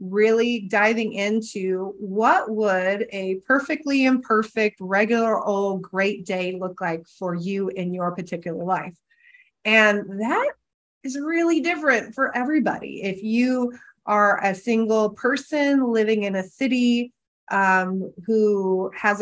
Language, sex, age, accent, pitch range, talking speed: English, female, 30-49, American, 200-240 Hz, 125 wpm